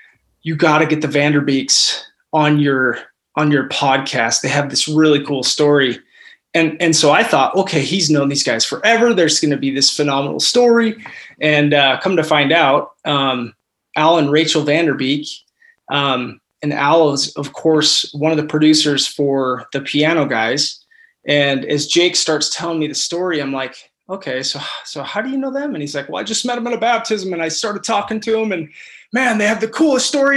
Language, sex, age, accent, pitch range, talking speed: English, male, 20-39, American, 140-200 Hz, 200 wpm